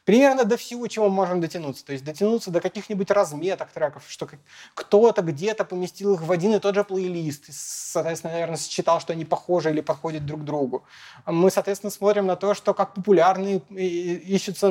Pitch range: 160-200 Hz